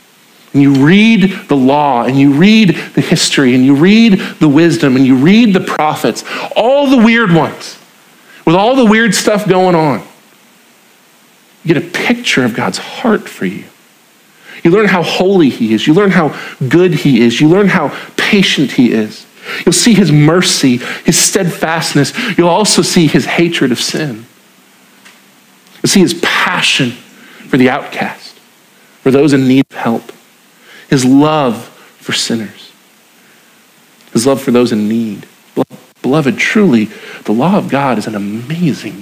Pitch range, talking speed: 130-195 Hz, 160 wpm